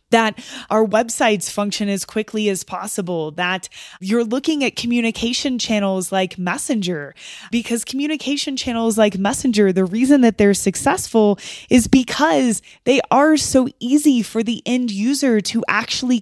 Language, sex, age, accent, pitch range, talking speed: English, female, 20-39, American, 195-235 Hz, 140 wpm